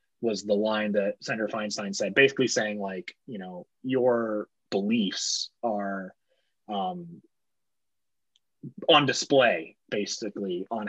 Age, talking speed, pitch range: 30-49, 110 wpm, 115-140 Hz